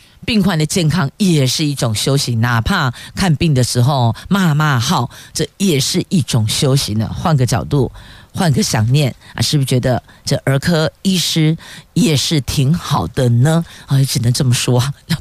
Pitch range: 135-195 Hz